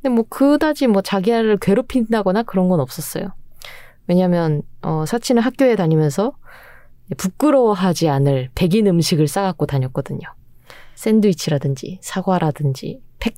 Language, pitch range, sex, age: Korean, 150-220 Hz, female, 20-39